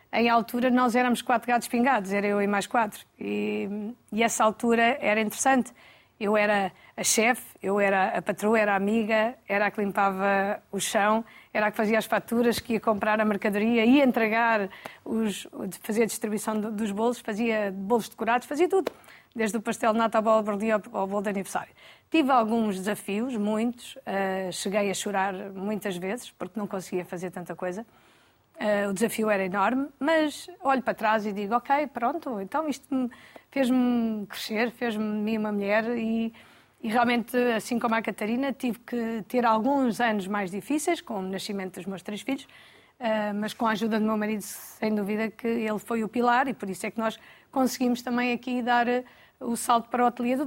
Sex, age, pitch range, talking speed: female, 20-39, 205-240 Hz, 185 wpm